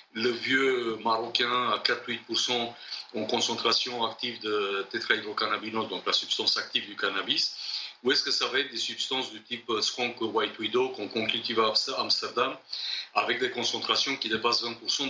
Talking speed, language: 160 wpm, French